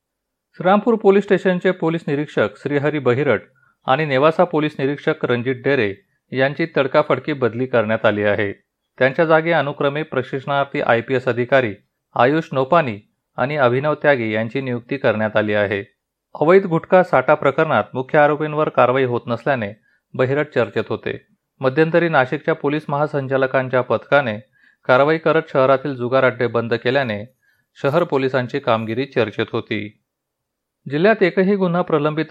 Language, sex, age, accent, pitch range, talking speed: Marathi, male, 30-49, native, 120-155 Hz, 130 wpm